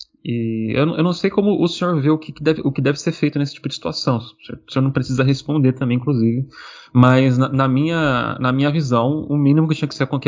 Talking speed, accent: 245 wpm, Brazilian